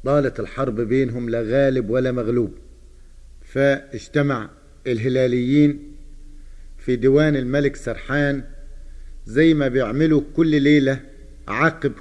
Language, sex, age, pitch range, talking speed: Arabic, male, 50-69, 130-165 Hz, 95 wpm